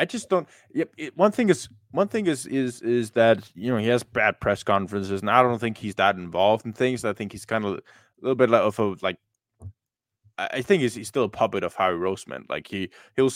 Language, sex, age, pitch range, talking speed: English, male, 20-39, 105-125 Hz, 245 wpm